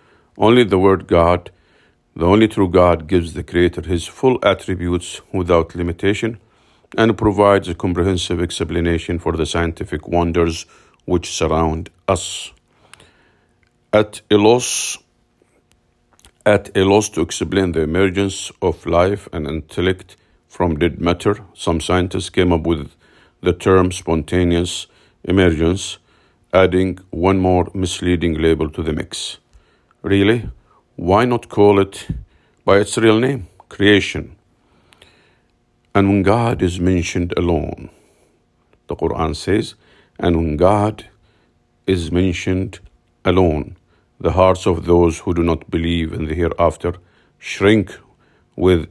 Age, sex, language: 50-69, male, English